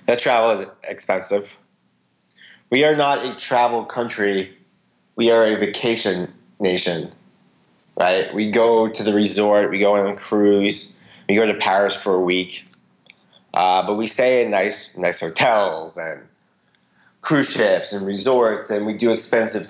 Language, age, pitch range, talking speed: English, 30-49, 95-115 Hz, 150 wpm